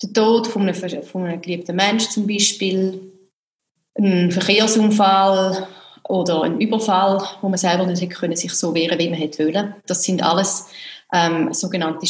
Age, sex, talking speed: 30-49, female, 150 wpm